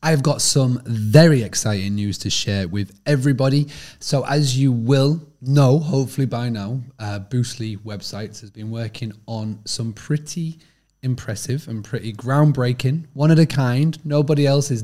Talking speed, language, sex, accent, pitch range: 155 wpm, English, male, British, 110-140 Hz